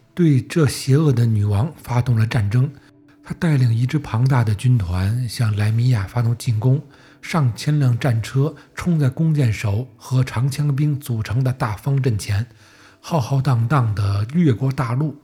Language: Chinese